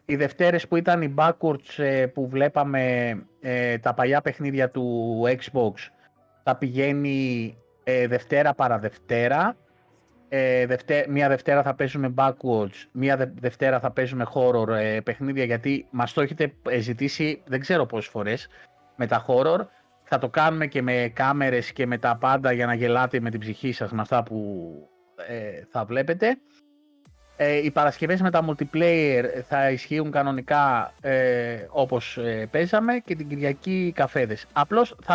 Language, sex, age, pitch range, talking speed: Greek, male, 30-49, 125-150 Hz, 140 wpm